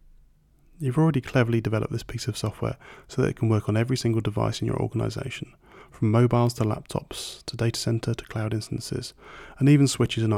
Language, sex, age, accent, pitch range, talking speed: English, male, 30-49, British, 110-130 Hz, 195 wpm